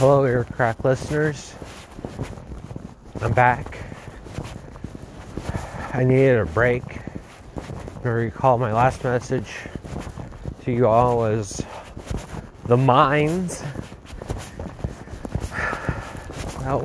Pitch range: 100-125 Hz